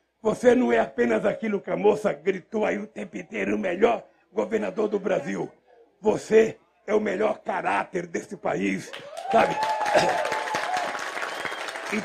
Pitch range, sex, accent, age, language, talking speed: 195-230 Hz, male, Brazilian, 60-79, Portuguese, 135 wpm